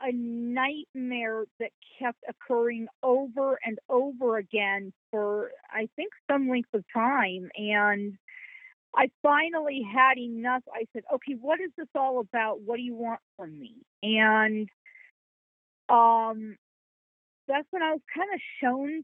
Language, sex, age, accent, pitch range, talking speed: English, female, 40-59, American, 230-275 Hz, 140 wpm